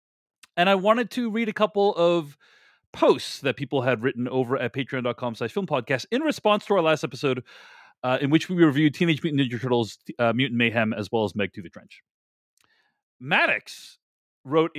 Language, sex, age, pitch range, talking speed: English, male, 40-59, 135-185 Hz, 185 wpm